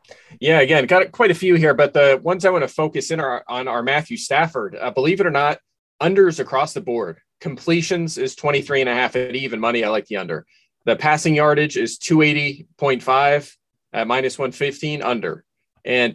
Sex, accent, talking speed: male, American, 195 wpm